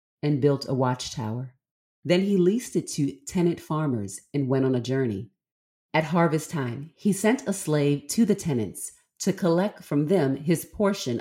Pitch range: 135-175 Hz